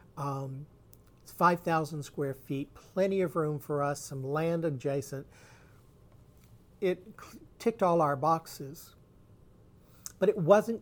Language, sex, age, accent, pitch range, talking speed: English, male, 50-69, American, 135-165 Hz, 115 wpm